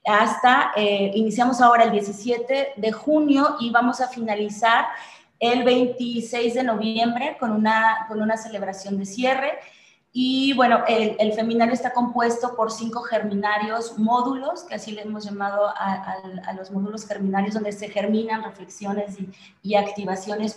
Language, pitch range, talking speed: Spanish, 210-240 Hz, 145 wpm